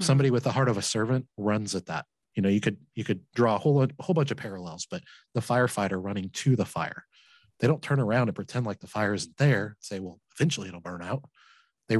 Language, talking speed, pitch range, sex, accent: English, 240 wpm, 100-125 Hz, male, American